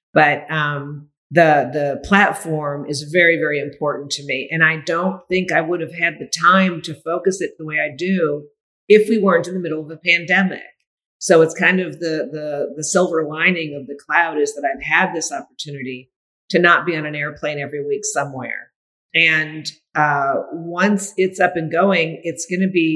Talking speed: 195 wpm